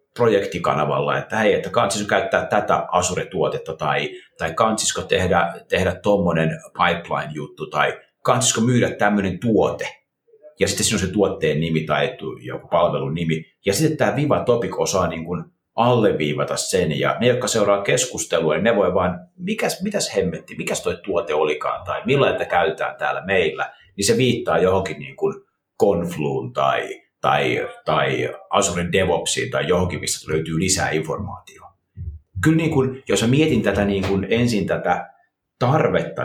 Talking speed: 150 wpm